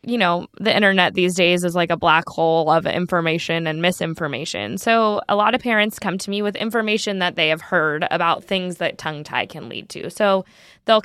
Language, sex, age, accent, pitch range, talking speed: English, female, 10-29, American, 170-225 Hz, 210 wpm